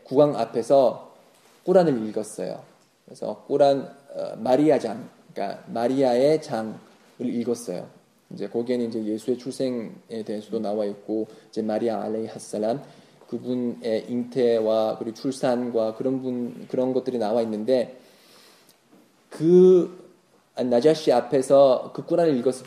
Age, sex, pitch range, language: 20-39, male, 115-150 Hz, Korean